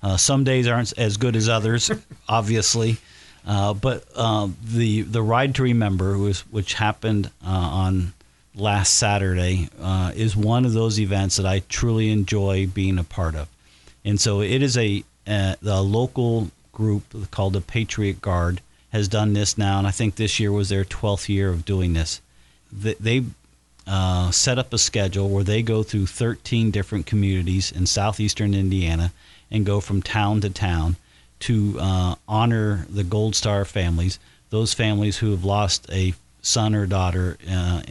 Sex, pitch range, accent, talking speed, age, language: male, 90-110 Hz, American, 170 wpm, 50-69, English